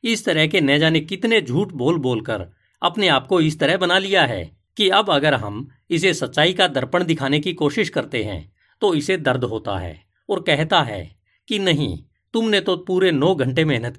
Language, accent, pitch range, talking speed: Hindi, native, 110-180 Hz, 195 wpm